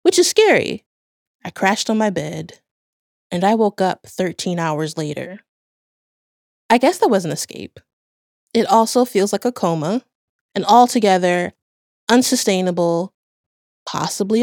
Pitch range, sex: 175-240 Hz, female